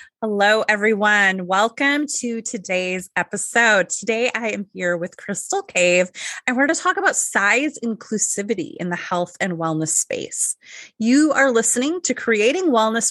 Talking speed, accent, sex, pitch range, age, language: 150 wpm, American, female, 185-235 Hz, 20-39, English